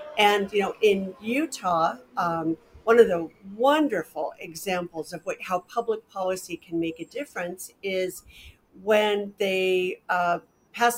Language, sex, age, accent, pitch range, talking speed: English, female, 50-69, American, 175-220 Hz, 135 wpm